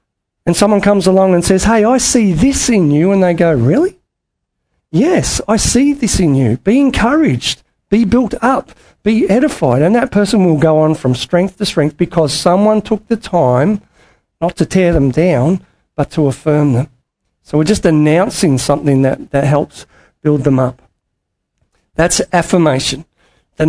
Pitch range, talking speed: 145-190 Hz, 170 wpm